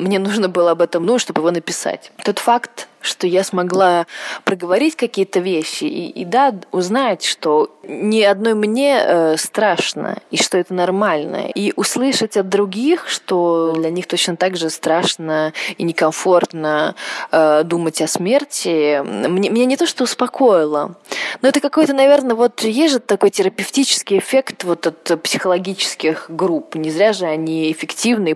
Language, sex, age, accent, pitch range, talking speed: Russian, female, 20-39, native, 165-230 Hz, 155 wpm